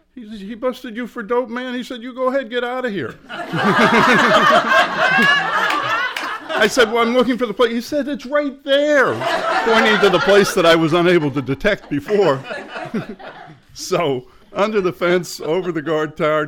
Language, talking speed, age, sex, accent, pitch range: English, 170 wpm, 50-69, male, American, 125-185 Hz